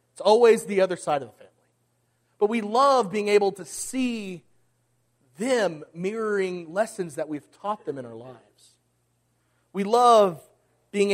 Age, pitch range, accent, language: 40-59, 140-205 Hz, American, English